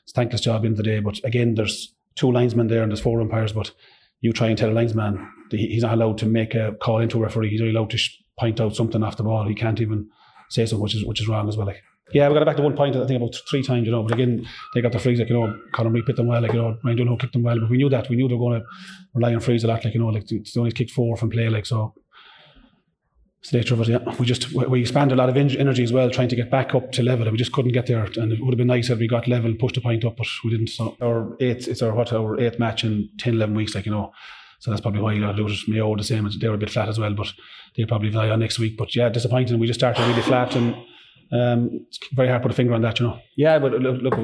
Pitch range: 110-120 Hz